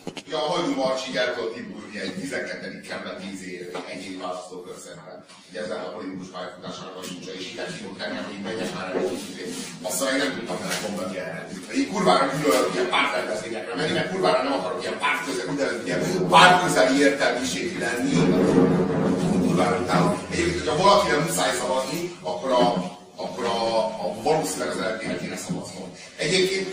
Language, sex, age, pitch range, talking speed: Hungarian, male, 40-59, 90-120 Hz, 150 wpm